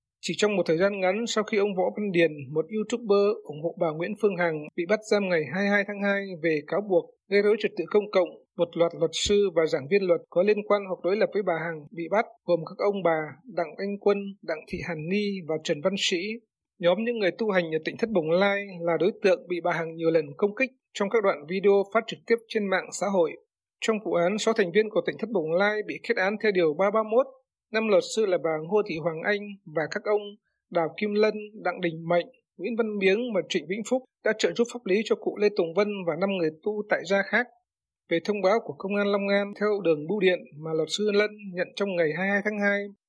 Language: Vietnamese